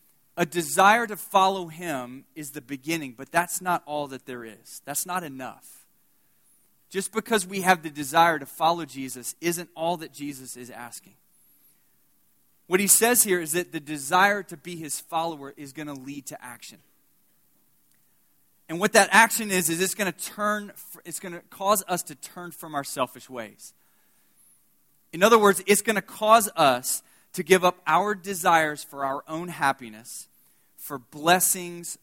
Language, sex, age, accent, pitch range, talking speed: English, male, 20-39, American, 145-190 Hz, 165 wpm